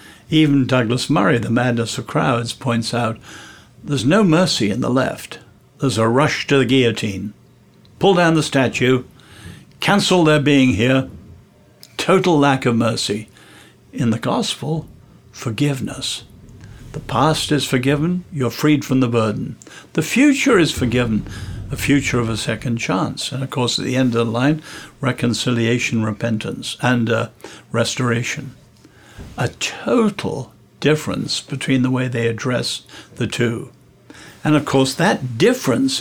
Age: 60-79